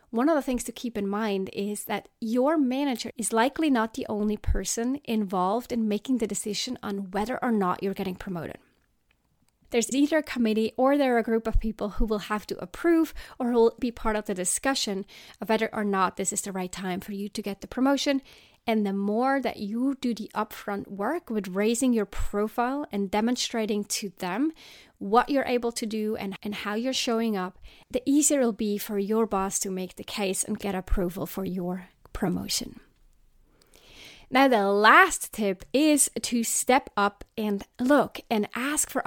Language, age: English, 30-49